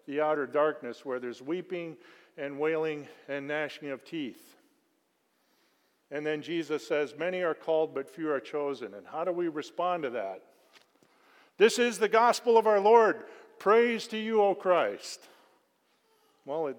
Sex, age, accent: male, 50-69, American